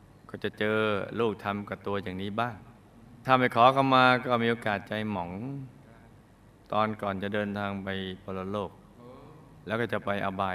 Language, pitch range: Thai, 100-125 Hz